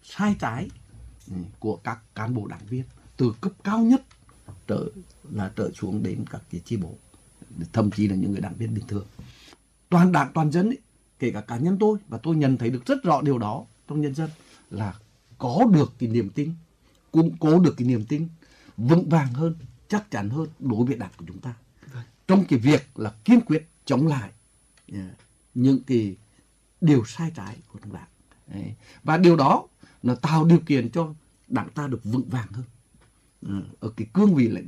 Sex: male